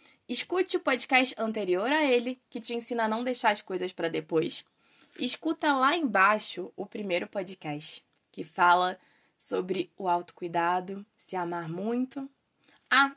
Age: 10-29